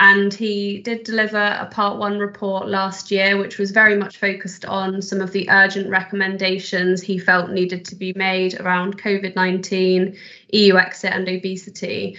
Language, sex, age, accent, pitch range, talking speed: English, female, 20-39, British, 190-205 Hz, 160 wpm